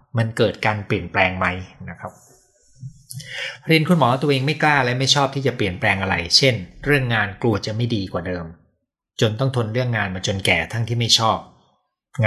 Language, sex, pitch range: Thai, male, 105-135 Hz